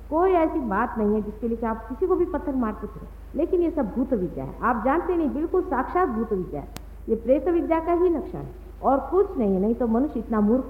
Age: 50-69